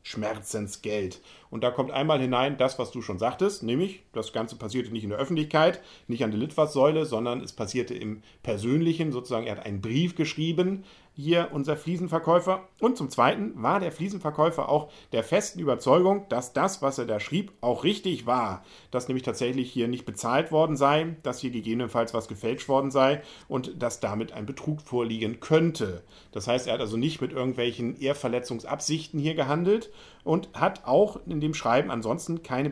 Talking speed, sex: 180 wpm, male